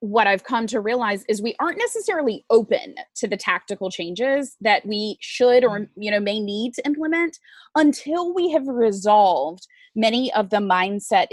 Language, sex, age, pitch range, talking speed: English, female, 20-39, 195-250 Hz, 170 wpm